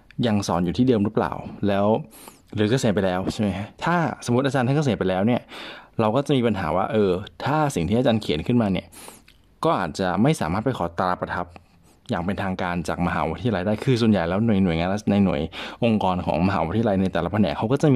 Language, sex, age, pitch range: Thai, male, 20-39, 90-120 Hz